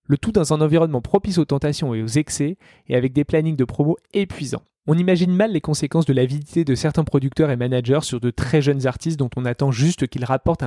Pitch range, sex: 135-170 Hz, male